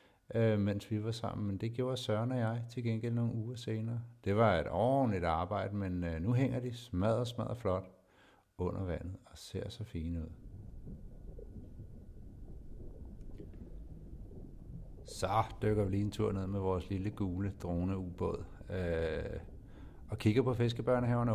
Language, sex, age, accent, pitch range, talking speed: Danish, male, 60-79, native, 85-110 Hz, 150 wpm